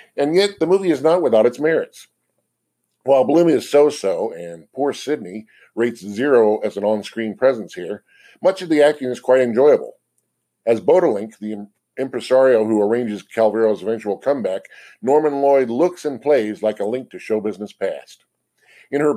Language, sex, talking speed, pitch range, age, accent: English, male, 165 wpm, 110-150 Hz, 50-69, American